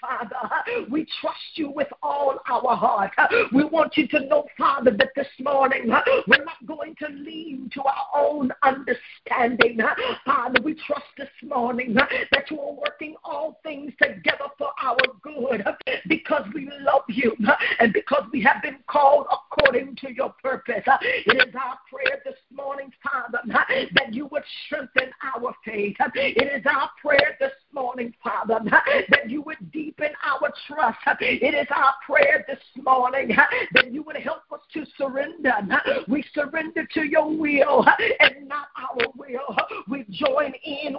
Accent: American